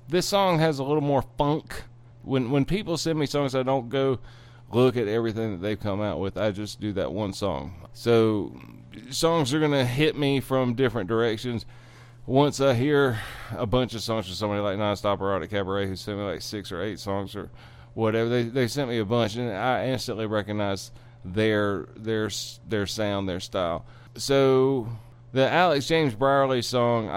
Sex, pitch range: male, 105-135 Hz